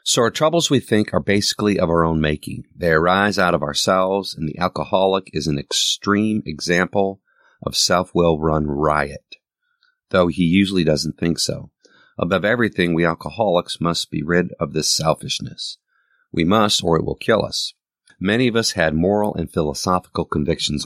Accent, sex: American, male